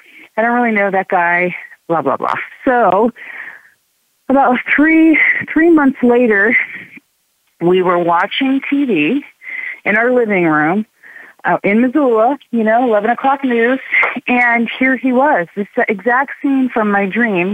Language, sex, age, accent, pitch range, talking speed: English, female, 40-59, American, 190-255 Hz, 135 wpm